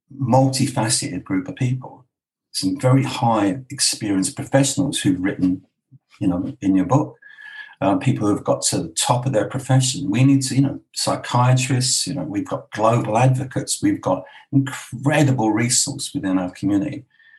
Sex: male